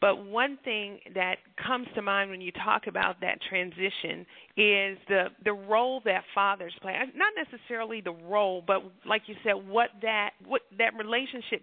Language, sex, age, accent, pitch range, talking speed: English, female, 40-59, American, 205-255 Hz, 170 wpm